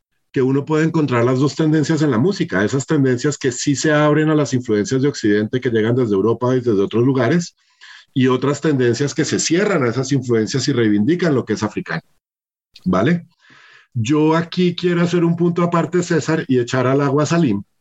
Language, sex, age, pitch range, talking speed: Spanish, male, 40-59, 120-150 Hz, 200 wpm